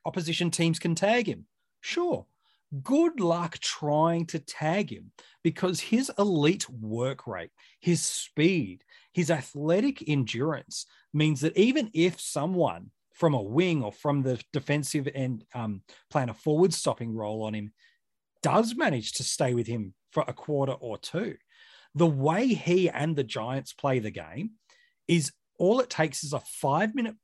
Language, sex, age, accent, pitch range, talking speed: English, male, 30-49, Australian, 130-180 Hz, 155 wpm